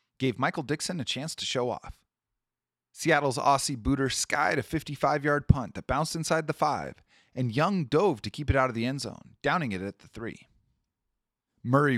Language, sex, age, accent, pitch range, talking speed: English, male, 30-49, American, 115-155 Hz, 185 wpm